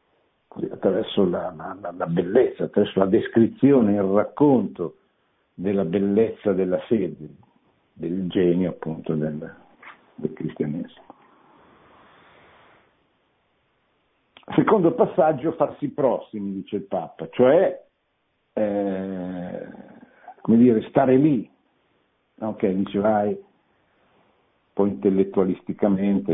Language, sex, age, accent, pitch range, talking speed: Italian, male, 60-79, native, 90-120 Hz, 85 wpm